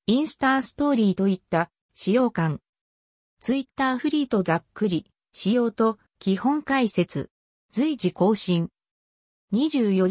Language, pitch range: Japanese, 175-265 Hz